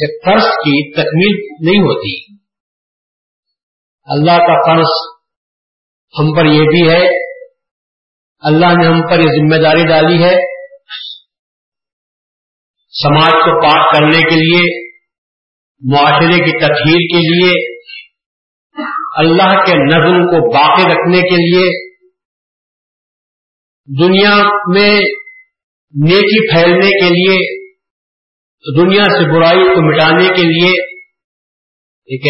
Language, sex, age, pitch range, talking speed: Urdu, male, 50-69, 155-195 Hz, 100 wpm